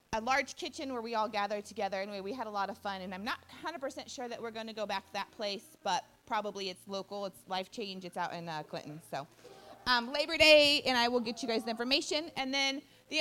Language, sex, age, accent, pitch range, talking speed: English, female, 30-49, American, 210-285 Hz, 255 wpm